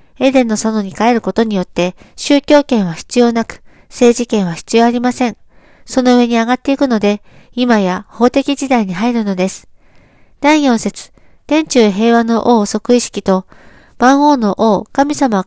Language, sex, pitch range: Japanese, female, 205-255 Hz